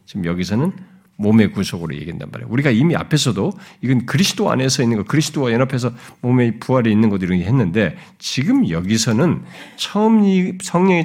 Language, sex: Korean, male